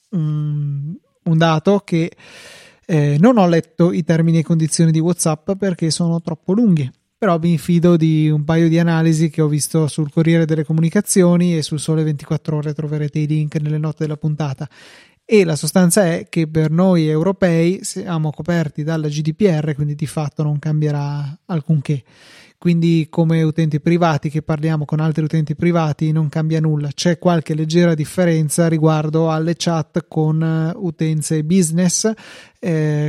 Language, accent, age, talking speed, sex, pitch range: Italian, native, 30-49, 155 wpm, male, 155-170 Hz